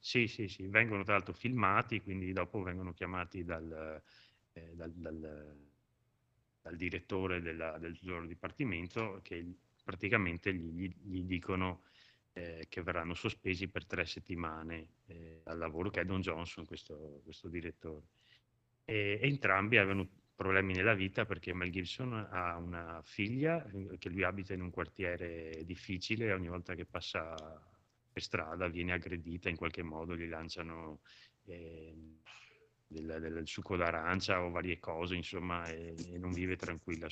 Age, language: 30-49, Italian